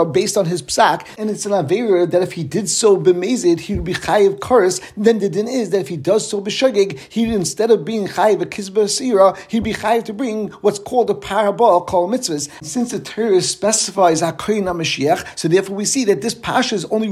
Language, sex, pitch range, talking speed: English, male, 185-220 Hz, 225 wpm